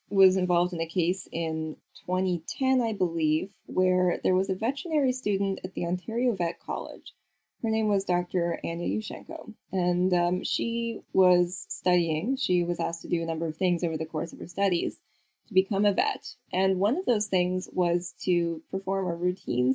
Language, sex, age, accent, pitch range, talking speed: English, female, 10-29, American, 175-220 Hz, 180 wpm